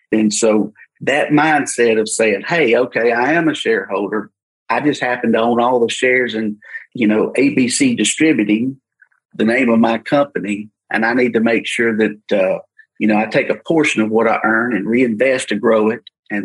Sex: male